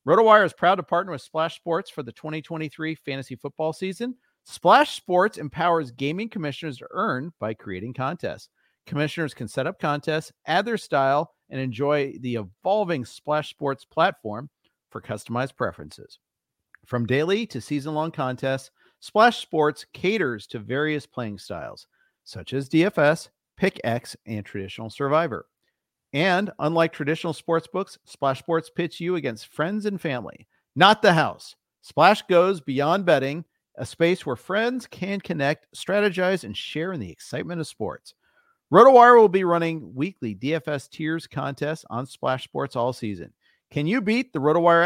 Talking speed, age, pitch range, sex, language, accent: 155 wpm, 50-69, 130-175 Hz, male, English, American